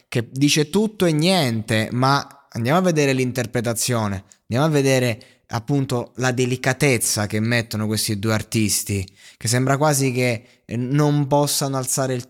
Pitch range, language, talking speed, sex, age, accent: 115-140 Hz, Italian, 140 wpm, male, 20-39, native